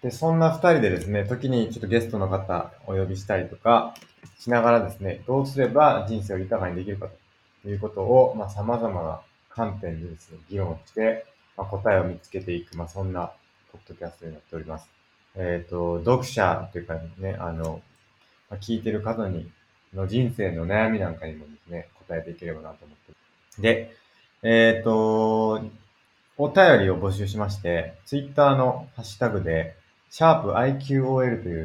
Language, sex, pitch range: Japanese, male, 90-115 Hz